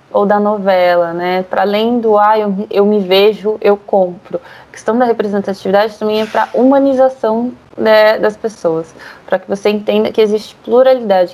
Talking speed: 175 wpm